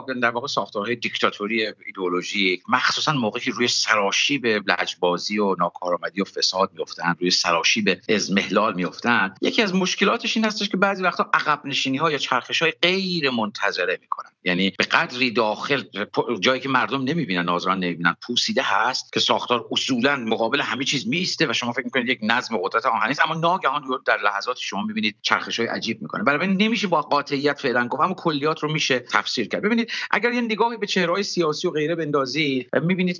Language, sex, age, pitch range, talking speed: English, male, 50-69, 110-175 Hz, 185 wpm